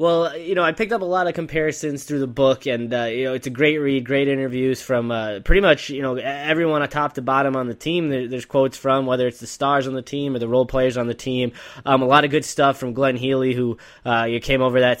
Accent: American